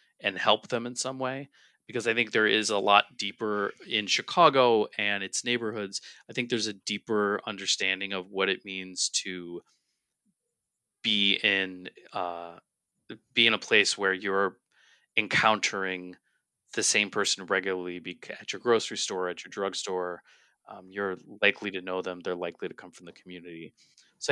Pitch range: 90-100 Hz